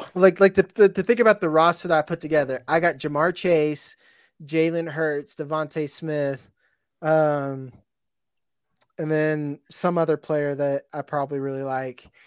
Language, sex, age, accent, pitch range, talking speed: English, male, 20-39, American, 145-170 Hz, 150 wpm